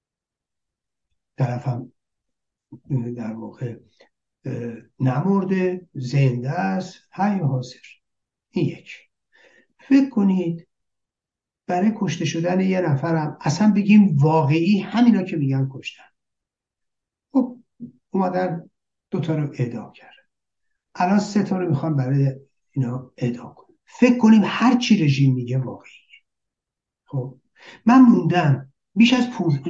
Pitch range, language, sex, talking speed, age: 135-215 Hz, Persian, male, 105 wpm, 60-79